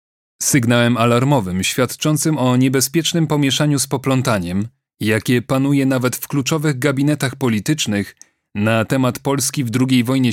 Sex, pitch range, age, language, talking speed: male, 115-140 Hz, 30-49, Polish, 120 wpm